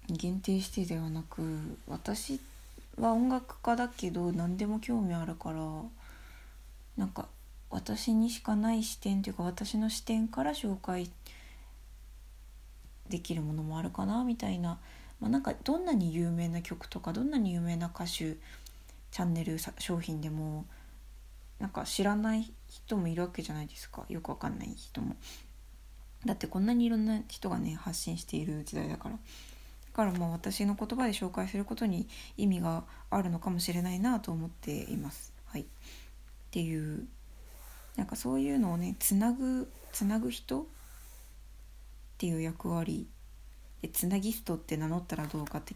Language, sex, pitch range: Japanese, female, 155-220 Hz